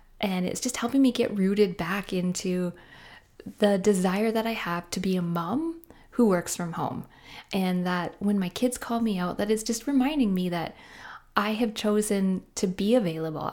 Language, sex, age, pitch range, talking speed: English, female, 20-39, 185-225 Hz, 185 wpm